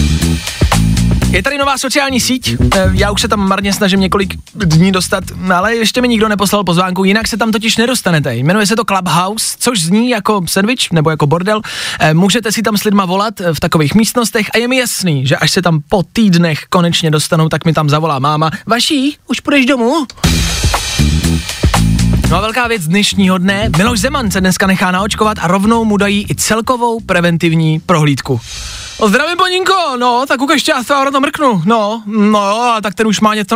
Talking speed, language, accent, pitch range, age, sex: 185 wpm, Czech, native, 175-250 Hz, 20-39, male